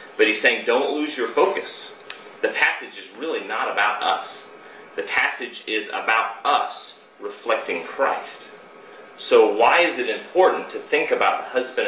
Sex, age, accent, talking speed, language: male, 30-49, American, 155 wpm, English